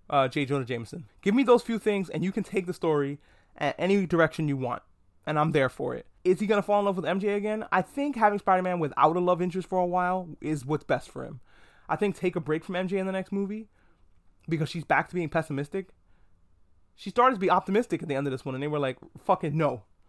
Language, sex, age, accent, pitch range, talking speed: English, male, 20-39, American, 140-185 Hz, 250 wpm